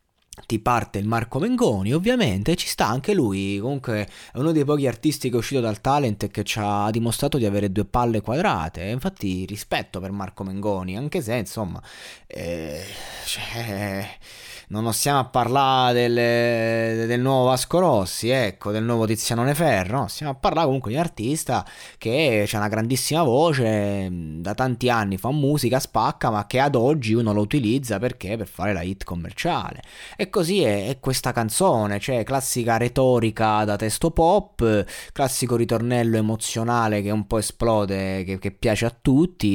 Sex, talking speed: male, 170 wpm